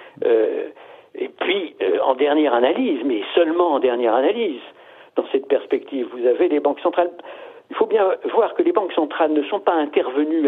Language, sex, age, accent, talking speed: French, male, 60-79, French, 185 wpm